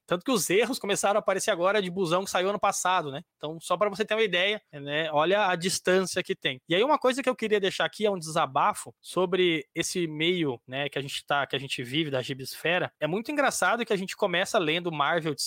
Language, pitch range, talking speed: Portuguese, 160-210 Hz, 250 wpm